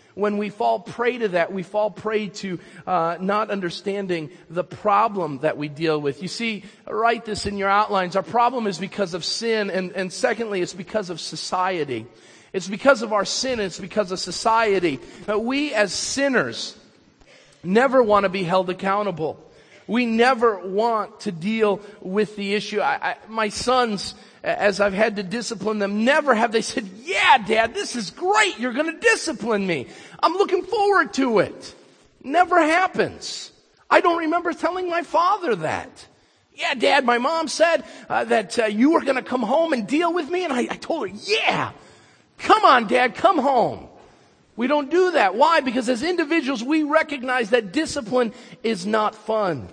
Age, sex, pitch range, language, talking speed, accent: 40-59, male, 200-270 Hz, English, 180 wpm, American